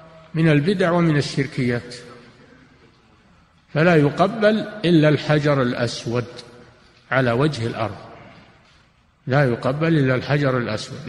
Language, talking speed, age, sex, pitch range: Arabic, 90 wpm, 50-69, male, 125-155 Hz